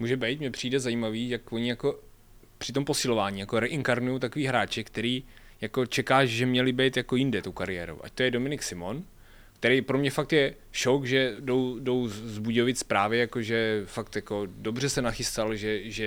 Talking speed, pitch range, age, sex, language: 185 wpm, 105-125 Hz, 20-39, male, Czech